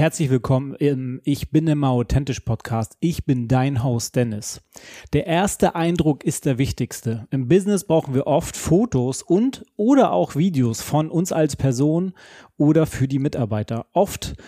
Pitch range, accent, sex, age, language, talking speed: 130-165 Hz, German, male, 30-49, German, 160 wpm